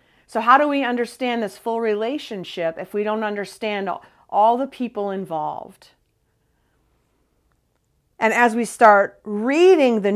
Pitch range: 180-240 Hz